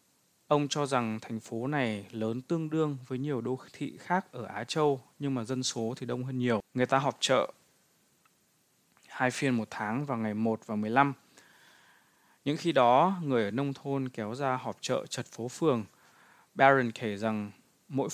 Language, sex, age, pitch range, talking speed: Vietnamese, male, 20-39, 110-140 Hz, 185 wpm